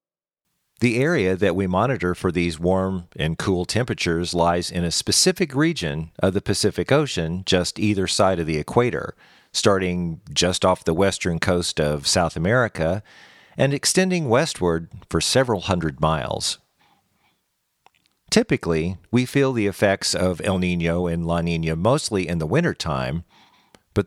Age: 50-69